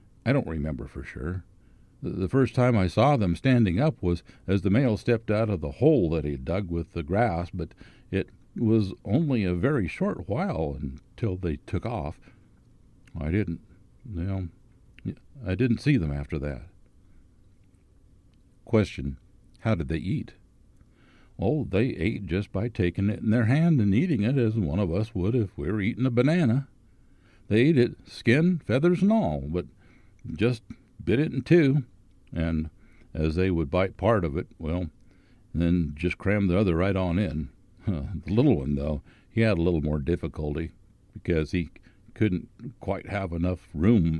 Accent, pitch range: American, 85-115 Hz